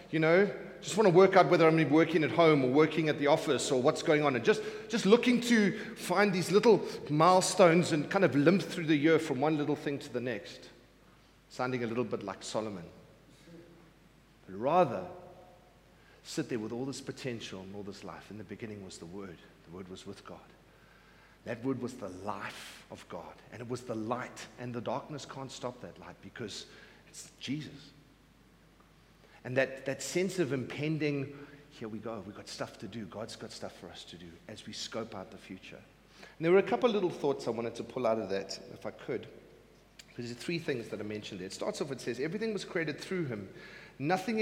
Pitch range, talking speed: 120-170 Hz, 215 wpm